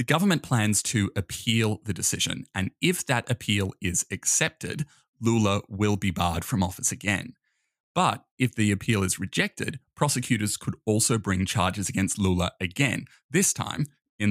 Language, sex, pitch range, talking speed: English, male, 95-130 Hz, 155 wpm